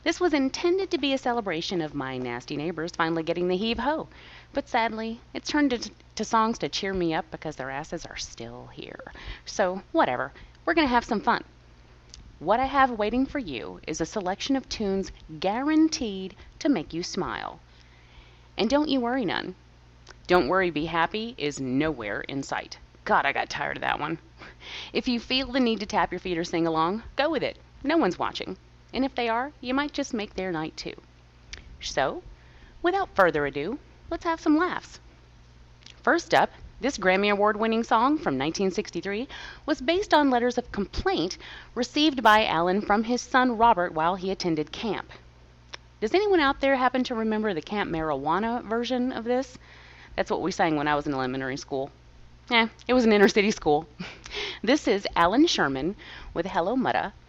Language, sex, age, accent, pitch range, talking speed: English, female, 30-49, American, 155-255 Hz, 185 wpm